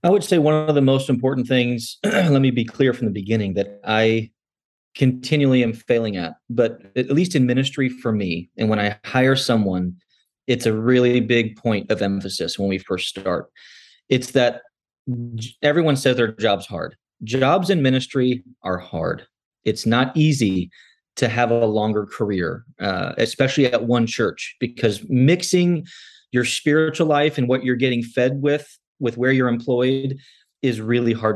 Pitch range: 110-130 Hz